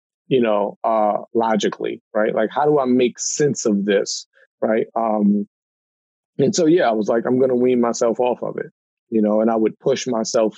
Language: English